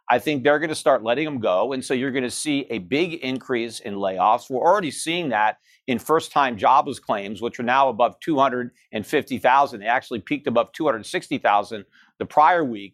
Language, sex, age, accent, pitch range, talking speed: English, male, 50-69, American, 130-200 Hz, 190 wpm